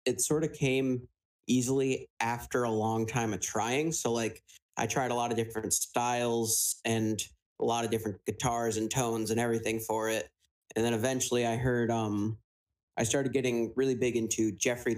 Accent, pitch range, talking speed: American, 110-125 Hz, 180 wpm